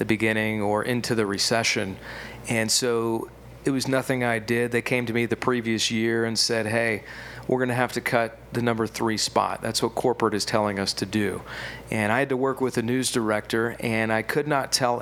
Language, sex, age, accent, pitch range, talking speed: English, male, 40-59, American, 110-125 Hz, 220 wpm